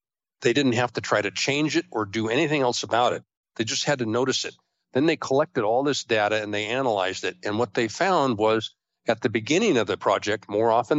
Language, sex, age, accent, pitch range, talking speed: English, male, 50-69, American, 105-125 Hz, 235 wpm